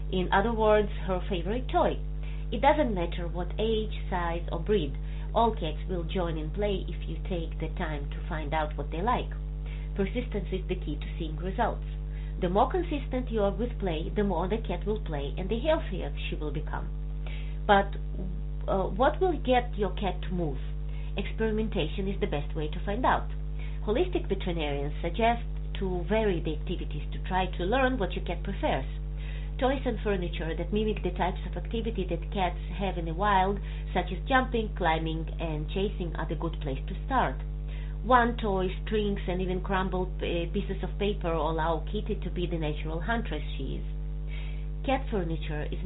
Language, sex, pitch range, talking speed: English, female, 150-200 Hz, 180 wpm